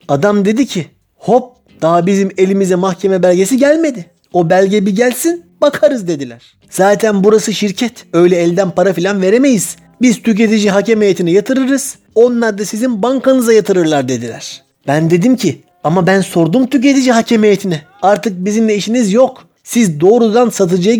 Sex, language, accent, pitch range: male, Turkish, native, 185-245 Hz